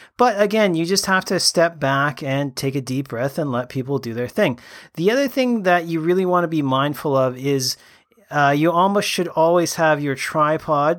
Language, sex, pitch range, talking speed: English, male, 140-175 Hz, 215 wpm